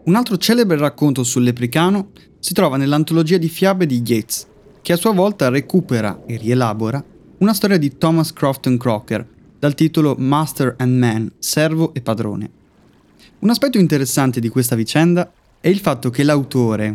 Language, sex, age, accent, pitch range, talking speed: Italian, male, 20-39, native, 115-160 Hz, 160 wpm